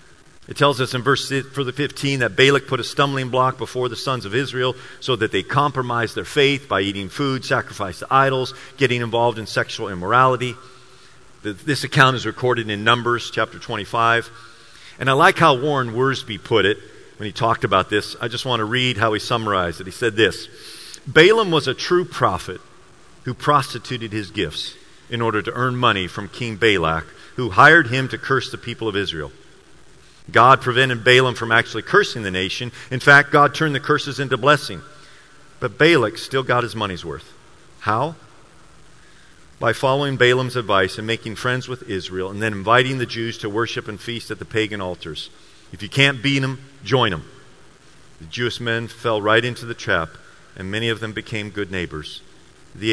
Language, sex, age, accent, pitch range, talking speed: English, male, 40-59, American, 110-130 Hz, 185 wpm